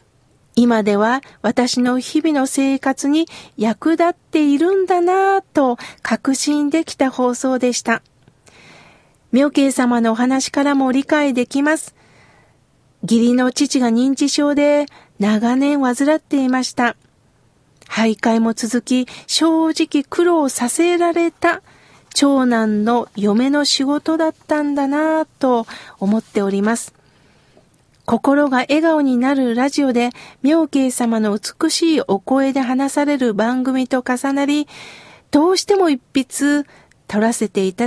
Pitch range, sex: 240-295 Hz, female